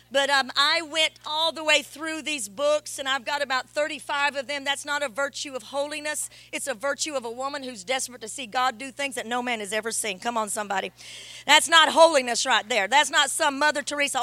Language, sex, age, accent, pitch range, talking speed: English, female, 40-59, American, 275-345 Hz, 230 wpm